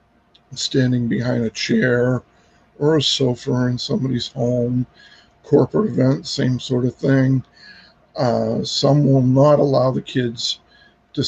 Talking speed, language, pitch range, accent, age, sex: 130 wpm, English, 125-140 Hz, American, 50-69, male